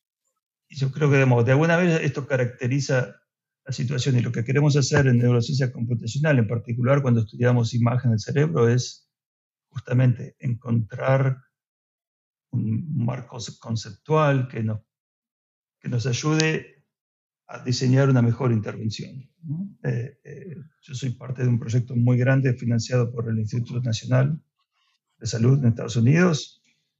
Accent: Argentinian